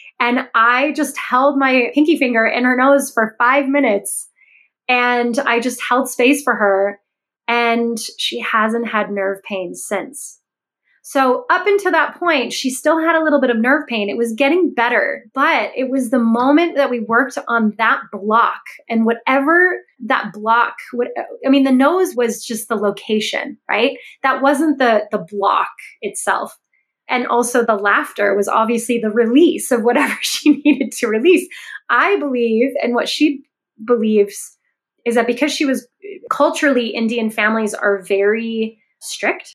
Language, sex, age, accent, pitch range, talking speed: English, female, 20-39, American, 220-275 Hz, 160 wpm